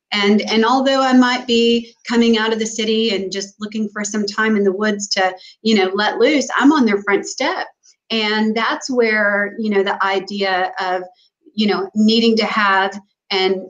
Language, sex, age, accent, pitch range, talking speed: English, female, 30-49, American, 190-220 Hz, 195 wpm